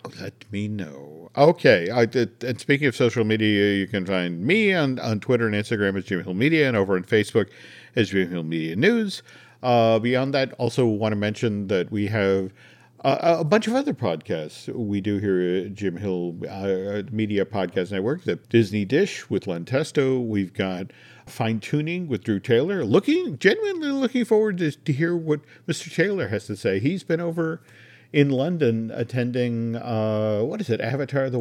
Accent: American